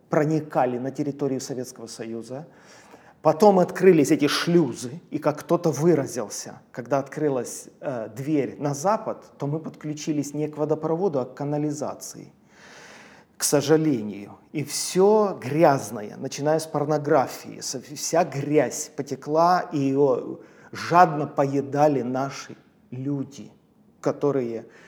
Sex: male